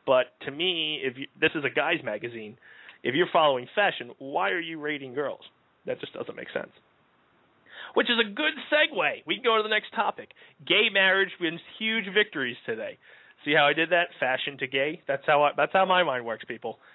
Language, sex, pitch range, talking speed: English, male, 130-160 Hz, 210 wpm